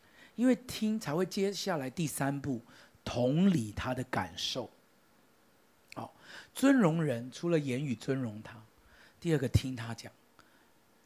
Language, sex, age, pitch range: Chinese, male, 50-69, 120-185 Hz